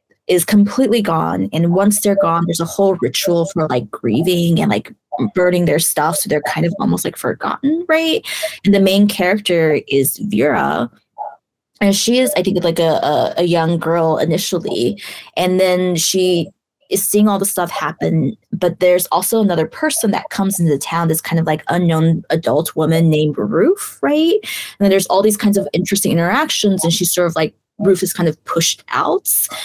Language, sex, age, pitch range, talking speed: English, female, 20-39, 165-205 Hz, 190 wpm